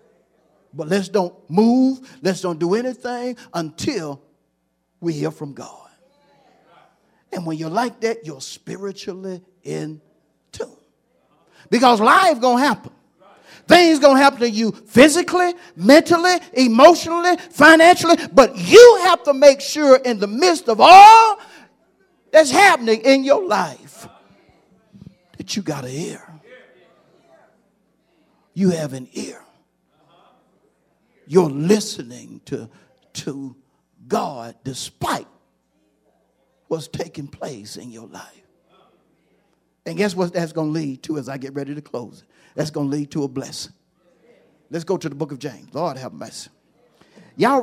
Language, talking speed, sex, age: English, 135 wpm, male, 50-69